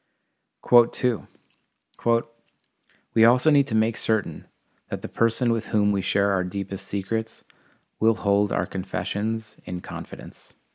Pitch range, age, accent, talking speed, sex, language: 90-110 Hz, 30-49, American, 140 wpm, male, English